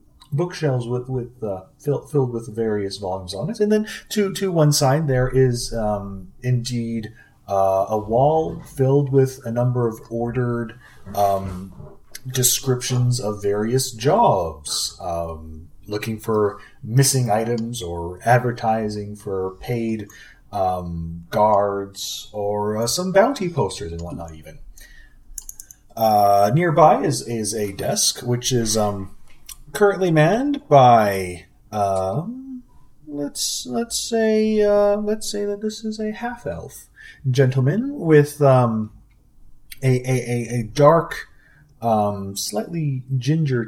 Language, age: English, 30-49